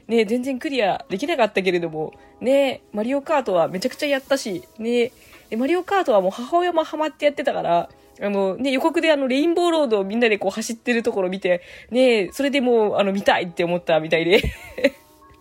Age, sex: 20-39, female